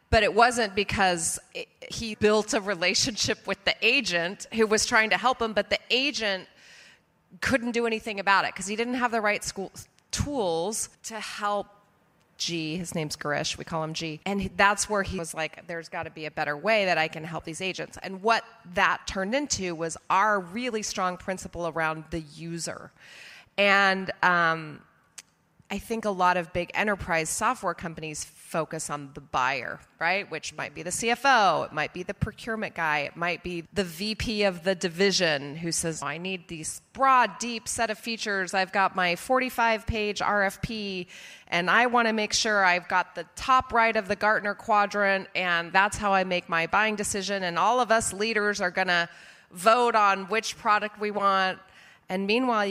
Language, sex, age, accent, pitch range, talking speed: English, female, 30-49, American, 170-220 Hz, 185 wpm